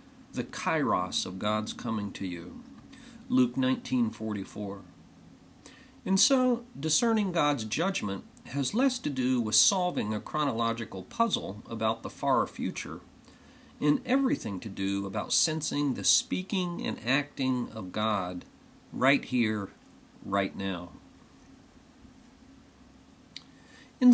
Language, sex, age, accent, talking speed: English, male, 50-69, American, 110 wpm